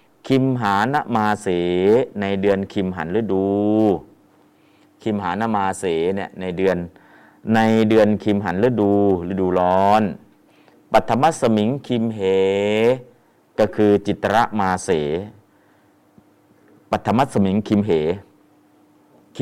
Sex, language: male, Thai